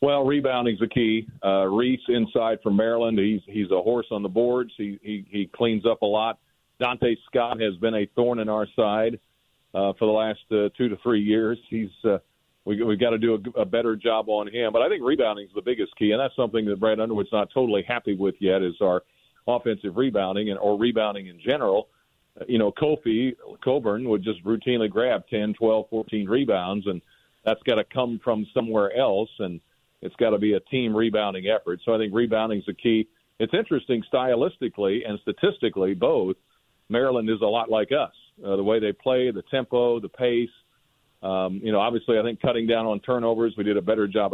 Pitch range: 105-120 Hz